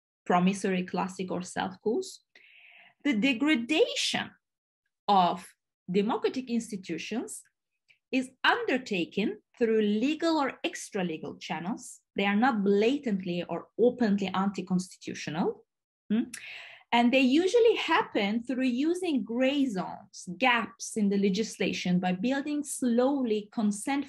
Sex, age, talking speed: female, 20-39, 100 wpm